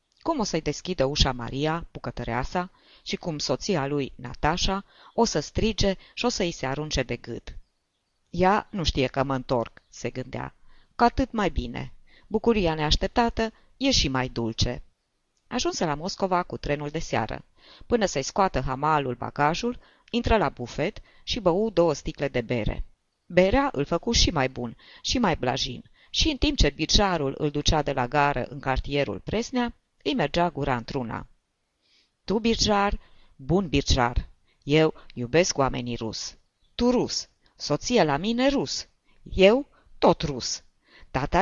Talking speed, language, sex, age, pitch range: 155 wpm, Romanian, female, 20-39, 130-200 Hz